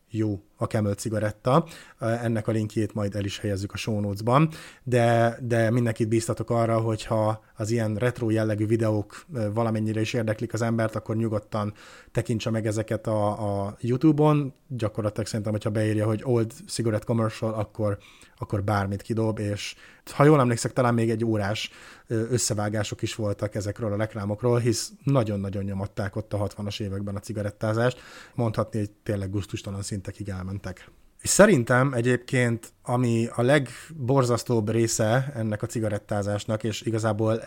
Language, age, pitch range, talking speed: Hungarian, 30-49, 105-120 Hz, 145 wpm